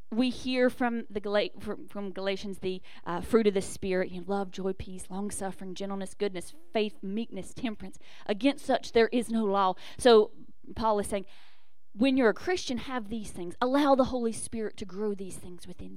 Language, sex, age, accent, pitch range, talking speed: English, female, 30-49, American, 190-255 Hz, 180 wpm